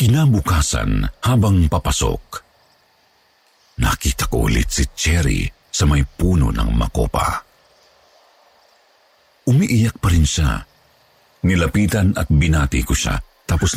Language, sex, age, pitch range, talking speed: Filipino, male, 50-69, 70-95 Hz, 100 wpm